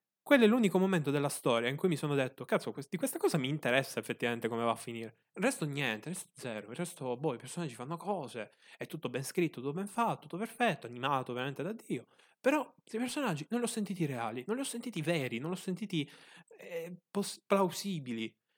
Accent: native